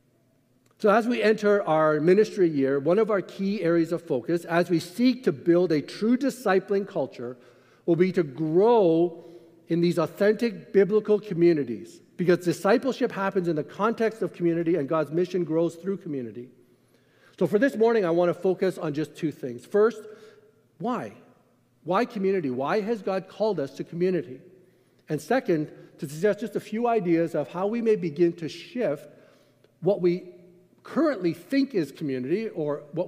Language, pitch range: English, 150-200 Hz